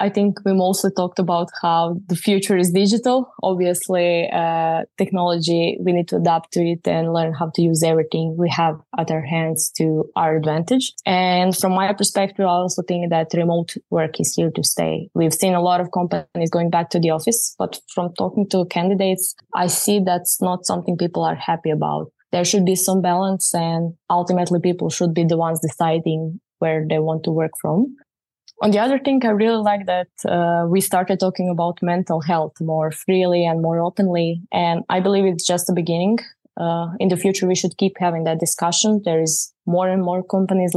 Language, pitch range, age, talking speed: English, 165-185 Hz, 20-39, 200 wpm